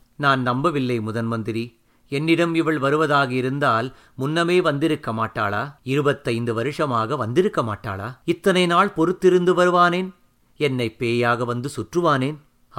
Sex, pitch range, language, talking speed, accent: male, 120-170 Hz, Tamil, 105 wpm, native